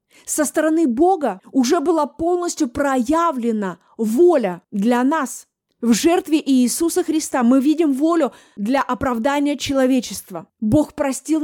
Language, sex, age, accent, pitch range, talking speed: Russian, female, 20-39, native, 250-315 Hz, 115 wpm